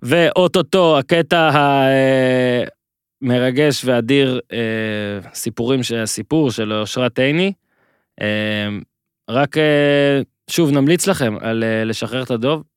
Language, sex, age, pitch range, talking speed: Hebrew, male, 20-39, 120-150 Hz, 80 wpm